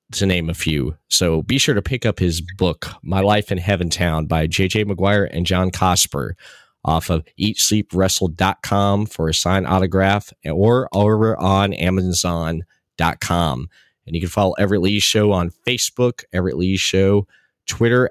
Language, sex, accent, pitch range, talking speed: English, male, American, 90-110 Hz, 160 wpm